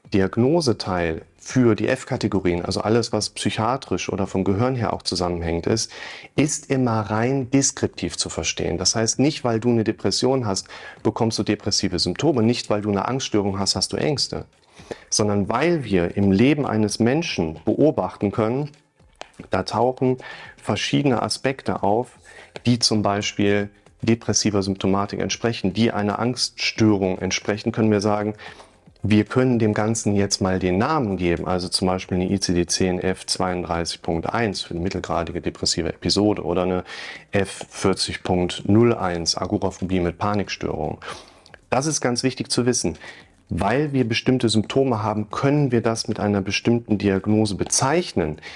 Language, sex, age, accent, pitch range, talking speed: German, male, 40-59, German, 95-115 Hz, 140 wpm